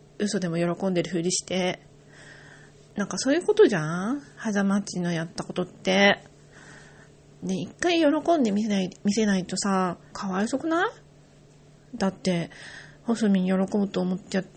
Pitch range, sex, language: 180-230 Hz, female, Japanese